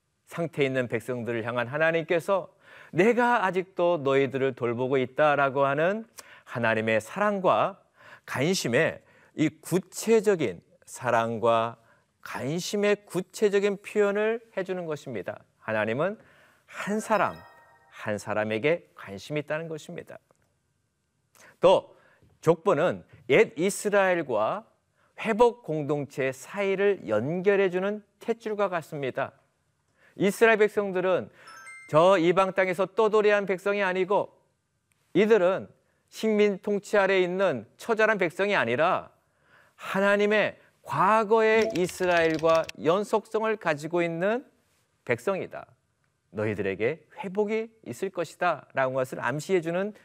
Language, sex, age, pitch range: Korean, male, 40-59, 150-210 Hz